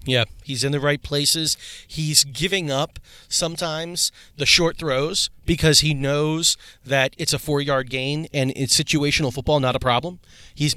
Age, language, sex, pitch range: 30-49, English, male, 130-155 Hz